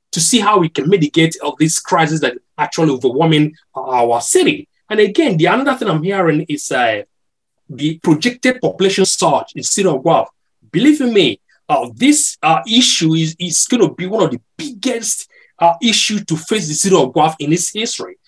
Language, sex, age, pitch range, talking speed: English, male, 30-49, 165-255 Hz, 195 wpm